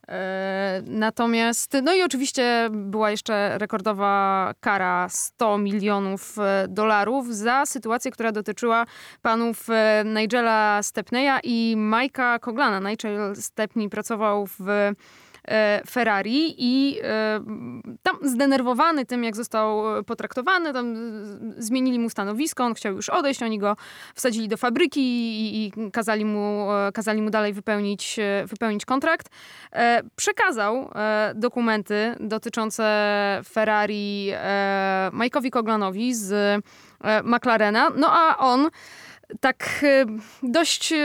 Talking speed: 100 wpm